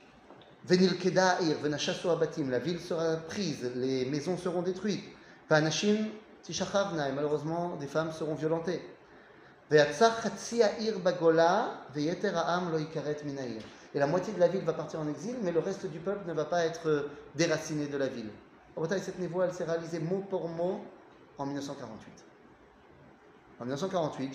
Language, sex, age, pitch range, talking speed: French, male, 30-49, 145-190 Hz, 125 wpm